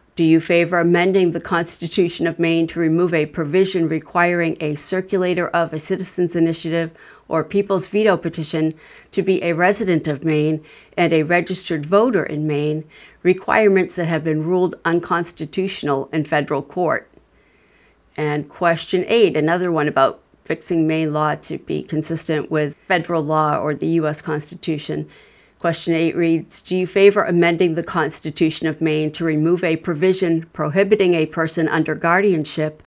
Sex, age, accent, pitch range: female, 50-69, American, 155-175 Hz